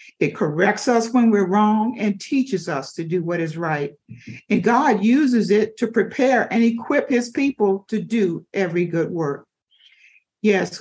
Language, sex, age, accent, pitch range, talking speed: English, female, 50-69, American, 185-250 Hz, 165 wpm